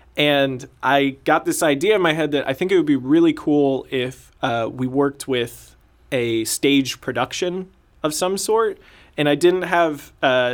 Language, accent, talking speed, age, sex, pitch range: English, American, 180 wpm, 20-39, male, 120-145 Hz